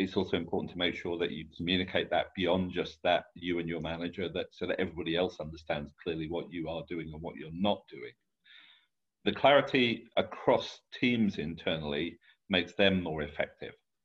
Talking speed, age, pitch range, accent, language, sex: 180 wpm, 40-59, 75-95 Hz, British, English, male